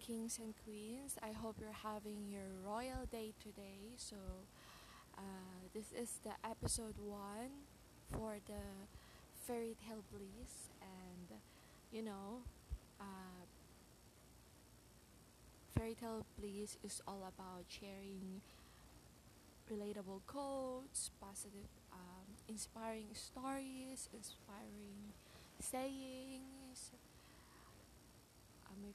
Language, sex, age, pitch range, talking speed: Filipino, female, 20-39, 195-225 Hz, 90 wpm